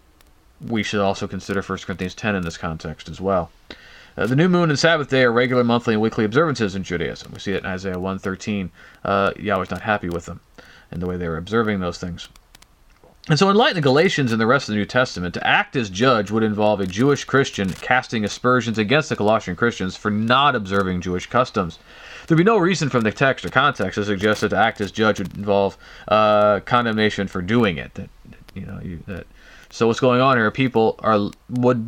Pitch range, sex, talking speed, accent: 95-125 Hz, male, 220 wpm, American